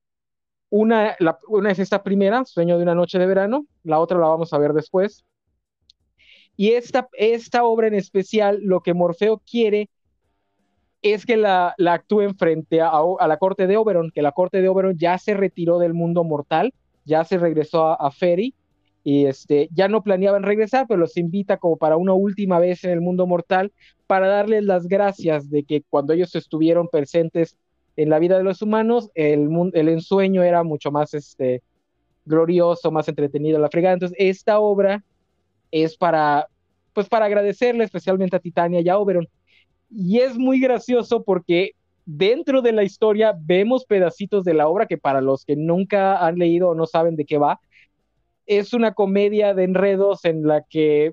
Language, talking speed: Spanish, 180 wpm